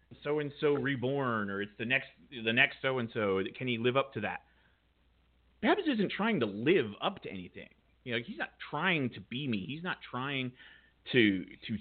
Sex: male